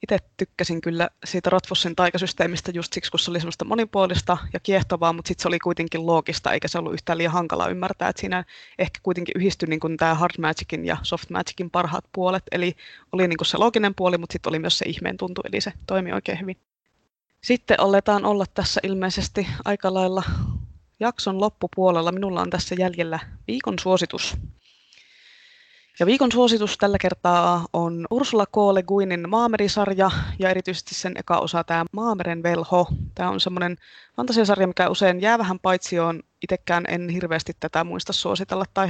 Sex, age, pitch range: female, 20-39, 170-195 Hz